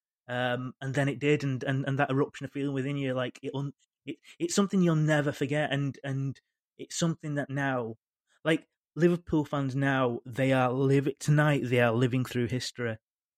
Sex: male